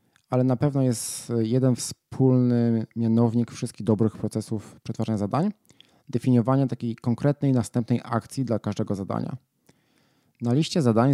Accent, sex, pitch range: native, male, 110-130 Hz